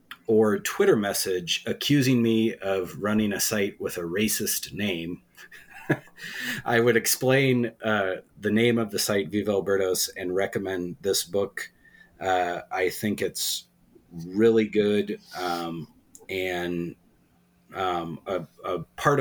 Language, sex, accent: English, male, American